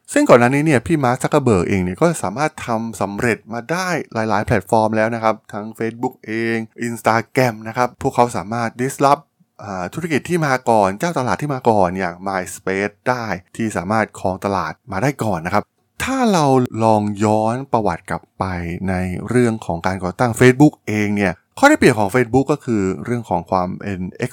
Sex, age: male, 20-39